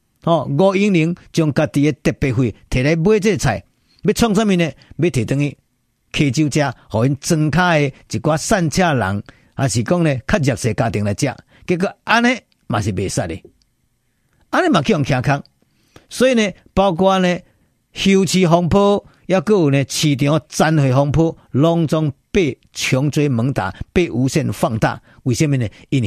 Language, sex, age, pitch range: Chinese, male, 50-69, 130-180 Hz